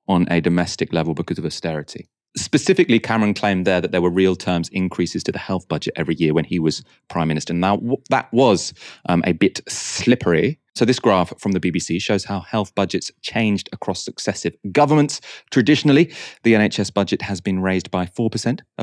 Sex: male